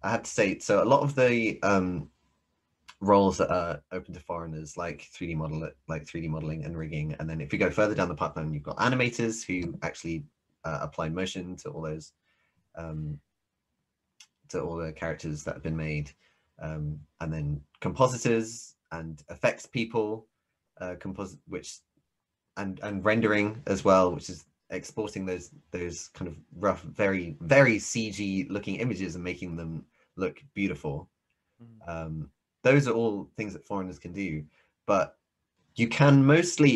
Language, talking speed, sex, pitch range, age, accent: English, 165 wpm, male, 80-110 Hz, 20-39, British